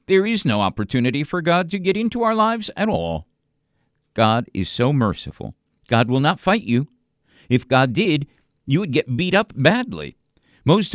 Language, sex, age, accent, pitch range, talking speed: English, male, 50-69, American, 115-150 Hz, 175 wpm